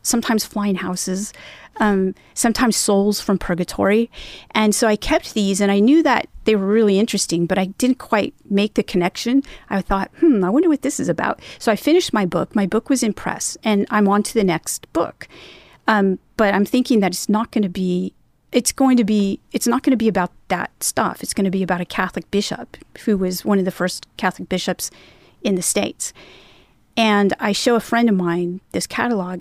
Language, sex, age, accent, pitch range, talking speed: English, female, 40-59, American, 190-230 Hz, 210 wpm